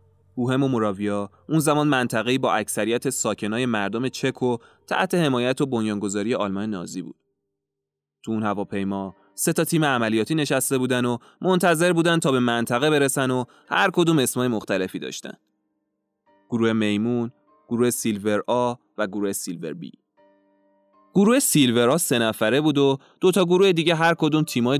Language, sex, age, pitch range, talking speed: Persian, male, 20-39, 110-170 Hz, 150 wpm